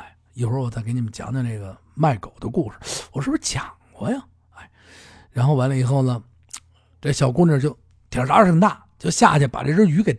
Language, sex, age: Chinese, male, 50-69